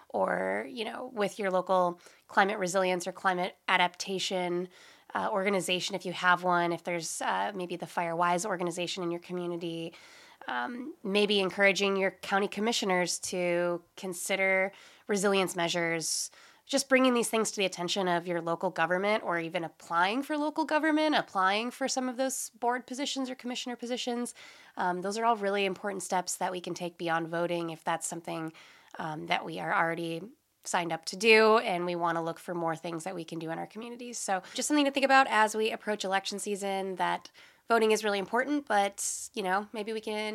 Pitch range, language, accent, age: 175-230 Hz, English, American, 20-39